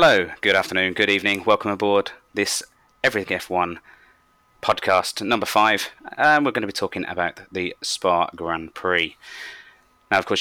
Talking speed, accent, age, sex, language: 155 wpm, British, 20-39, male, English